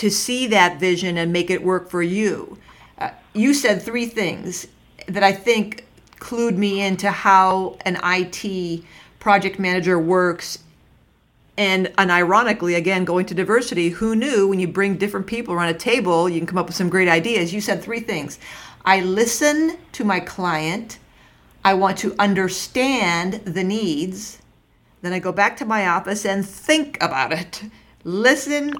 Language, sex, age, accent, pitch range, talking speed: English, female, 50-69, American, 175-215 Hz, 165 wpm